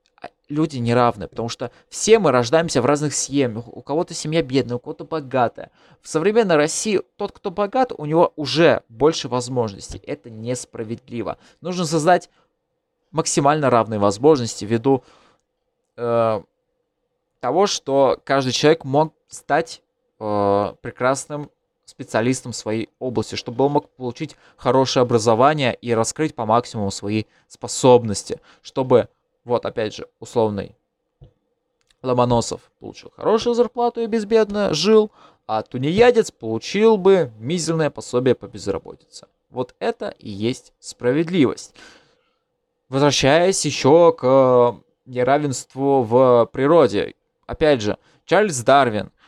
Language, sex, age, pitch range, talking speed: Russian, male, 20-39, 120-160 Hz, 115 wpm